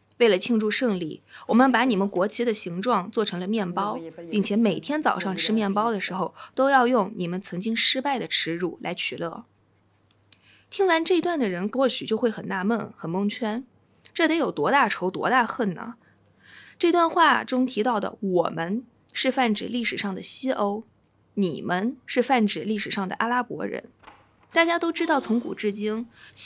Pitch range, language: 190-260 Hz, Chinese